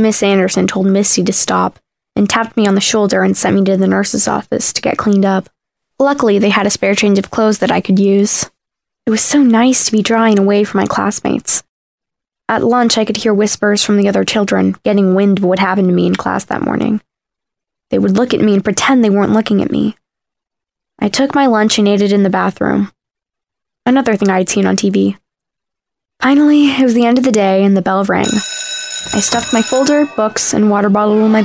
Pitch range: 195-235 Hz